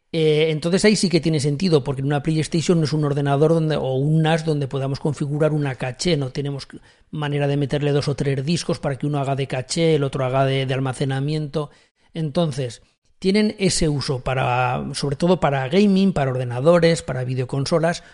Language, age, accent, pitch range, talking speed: Spanish, 40-59, Spanish, 140-165 Hz, 190 wpm